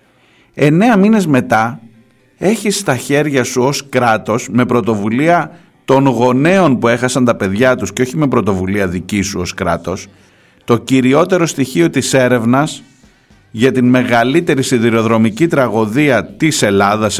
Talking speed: 135 wpm